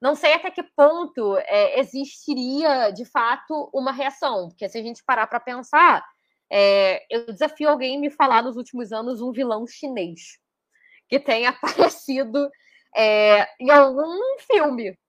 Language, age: Portuguese, 10-29